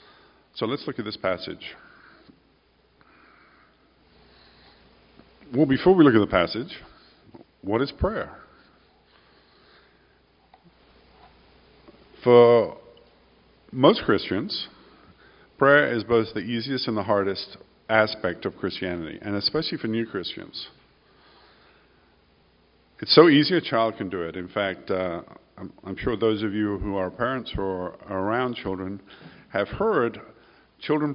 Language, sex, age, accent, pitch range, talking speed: English, male, 50-69, American, 100-120 Hz, 115 wpm